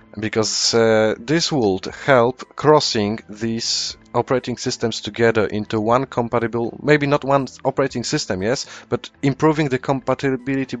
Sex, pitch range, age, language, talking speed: male, 115-140 Hz, 30-49, English, 130 wpm